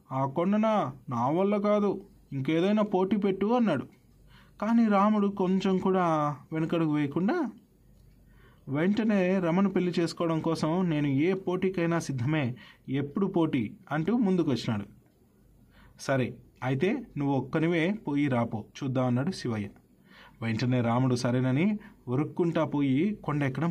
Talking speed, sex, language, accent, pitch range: 110 wpm, male, Telugu, native, 135-185 Hz